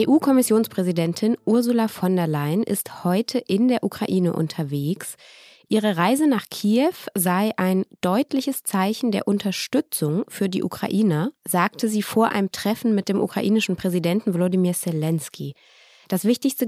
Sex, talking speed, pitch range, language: female, 135 wpm, 180-235 Hz, German